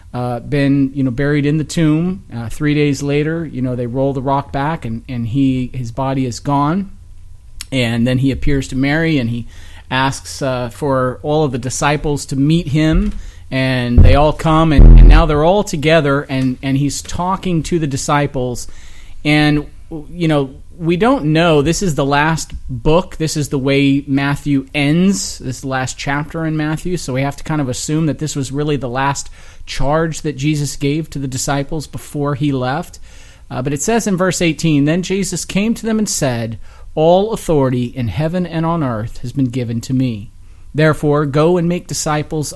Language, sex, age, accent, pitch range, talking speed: English, male, 30-49, American, 125-155 Hz, 195 wpm